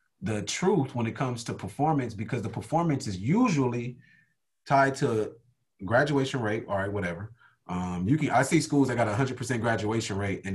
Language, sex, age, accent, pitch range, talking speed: English, male, 30-49, American, 115-150 Hz, 190 wpm